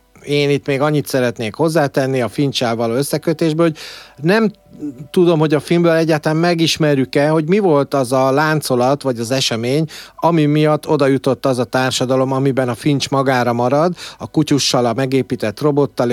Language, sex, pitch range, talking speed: Hungarian, male, 125-155 Hz, 165 wpm